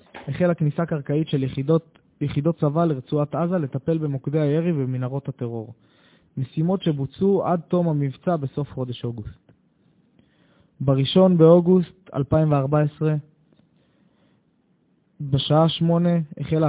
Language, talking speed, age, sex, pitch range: Hebrew, 100 wpm, 20-39, male, 140-165 Hz